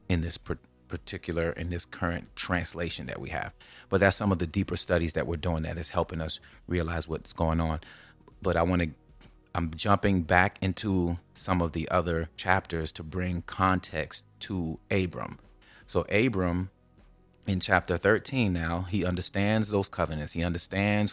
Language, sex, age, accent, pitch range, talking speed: English, male, 30-49, American, 85-95 Hz, 165 wpm